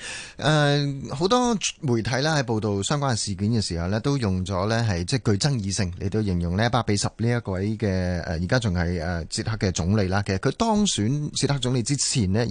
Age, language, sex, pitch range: 30-49, Chinese, male, 100-145 Hz